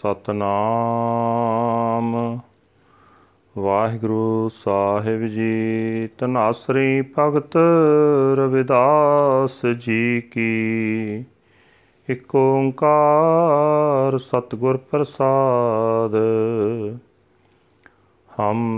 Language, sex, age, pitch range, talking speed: Punjabi, male, 40-59, 110-135 Hz, 45 wpm